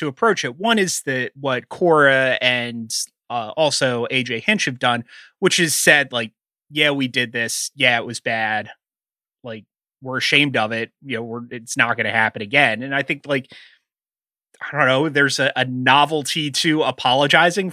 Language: English